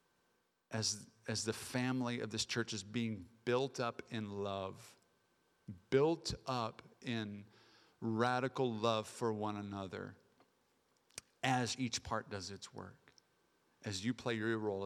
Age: 50-69